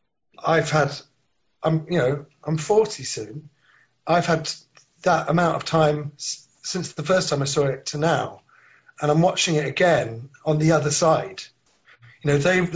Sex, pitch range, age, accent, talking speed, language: male, 130-165 Hz, 30-49, British, 165 wpm, English